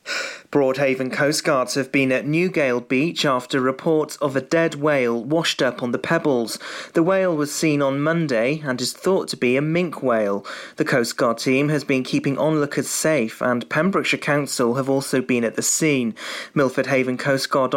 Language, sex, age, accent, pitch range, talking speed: English, male, 30-49, British, 125-155 Hz, 185 wpm